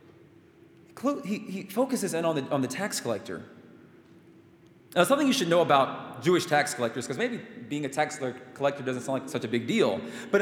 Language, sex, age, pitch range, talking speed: English, male, 20-39, 155-230 Hz, 185 wpm